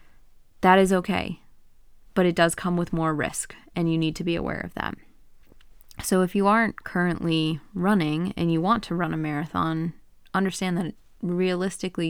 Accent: American